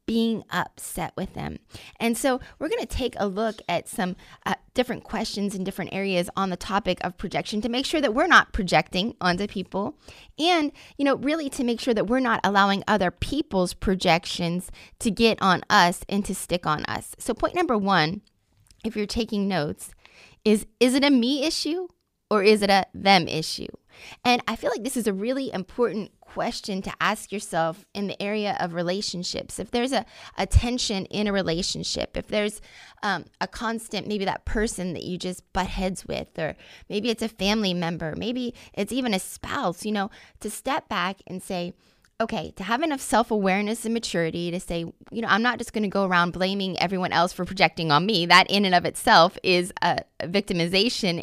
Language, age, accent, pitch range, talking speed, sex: English, 20-39, American, 180-230 Hz, 195 wpm, female